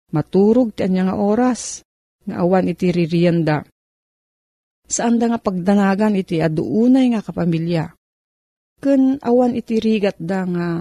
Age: 40-59